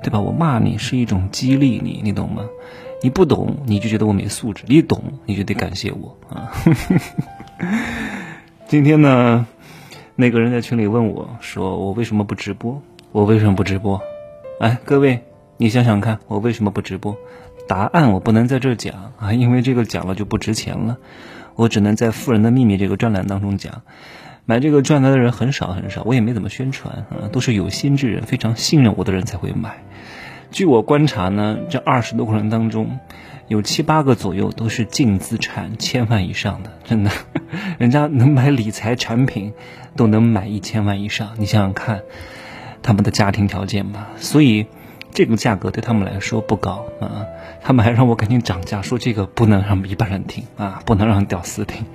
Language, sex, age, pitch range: Chinese, male, 20-39, 105-125 Hz